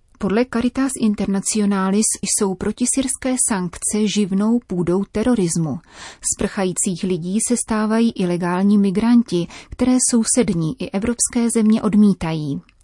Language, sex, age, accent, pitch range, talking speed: Czech, female, 30-49, native, 180-220 Hz, 105 wpm